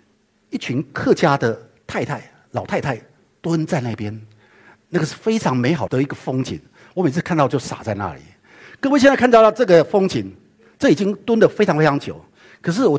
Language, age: Chinese, 50-69